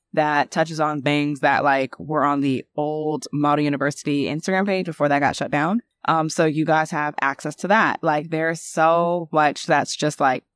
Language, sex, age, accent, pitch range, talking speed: English, female, 20-39, American, 145-165 Hz, 195 wpm